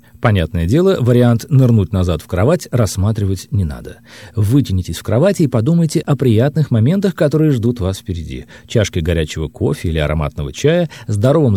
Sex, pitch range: male, 95-145 Hz